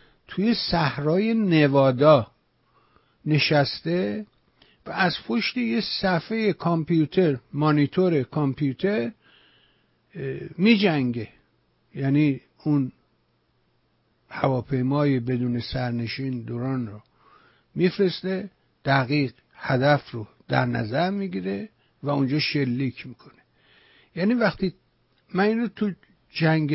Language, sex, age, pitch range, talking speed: English, male, 60-79, 130-170 Hz, 90 wpm